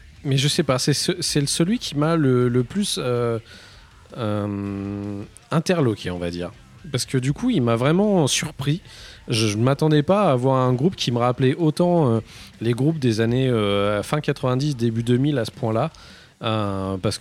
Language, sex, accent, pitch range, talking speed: French, male, French, 105-140 Hz, 180 wpm